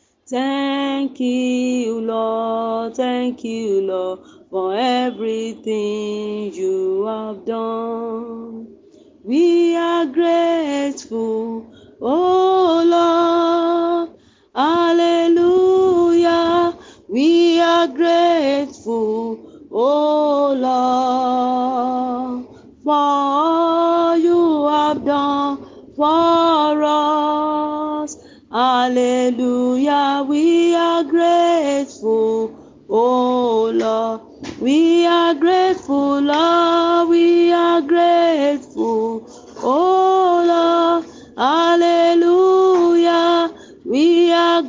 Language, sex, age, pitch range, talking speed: English, female, 40-59, 250-335 Hz, 65 wpm